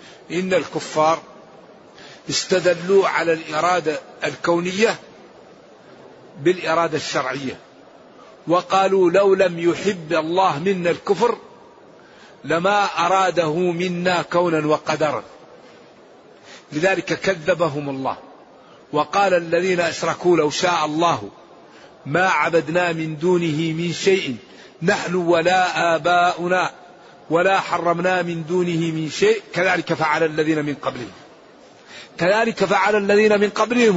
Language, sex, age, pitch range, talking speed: Arabic, male, 50-69, 170-200 Hz, 95 wpm